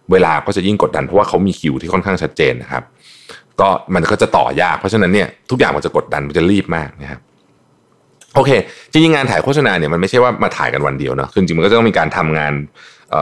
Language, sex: Thai, male